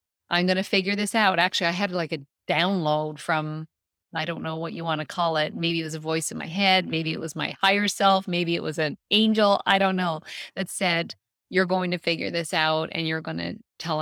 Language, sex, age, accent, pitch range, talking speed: English, female, 30-49, American, 160-205 Hz, 245 wpm